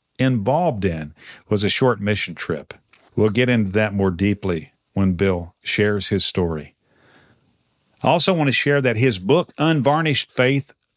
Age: 50-69